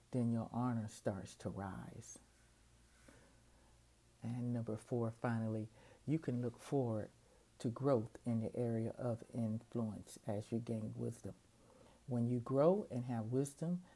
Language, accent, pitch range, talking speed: English, American, 115-135 Hz, 135 wpm